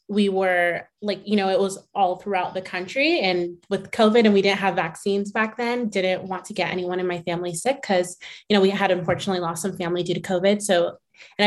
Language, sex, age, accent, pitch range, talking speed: English, female, 20-39, American, 180-210 Hz, 230 wpm